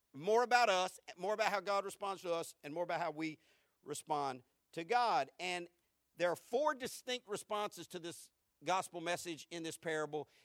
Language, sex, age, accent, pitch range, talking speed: English, male, 50-69, American, 150-200 Hz, 180 wpm